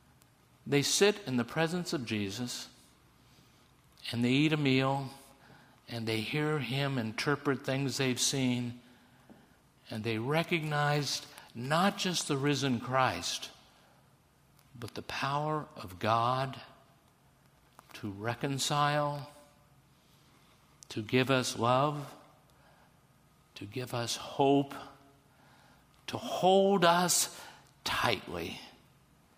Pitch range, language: 130-185 Hz, English